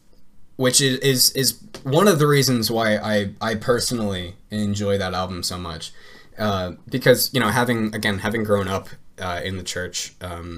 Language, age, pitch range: English, 10-29, 95-125 Hz